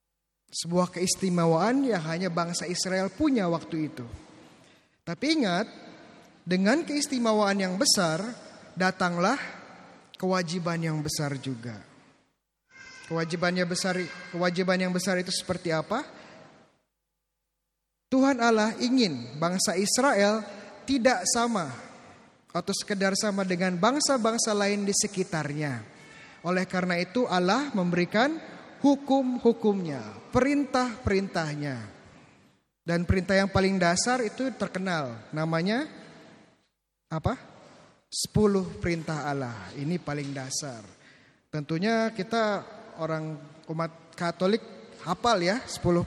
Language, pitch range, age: Indonesian, 165-215 Hz, 20-39